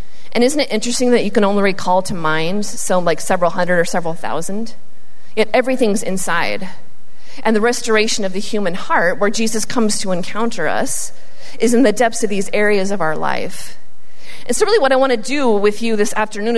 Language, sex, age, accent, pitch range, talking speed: English, female, 30-49, American, 210-260 Hz, 205 wpm